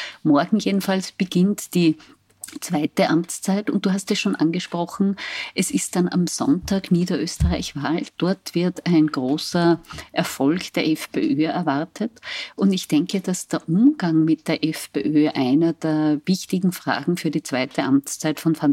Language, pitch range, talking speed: German, 150-180 Hz, 145 wpm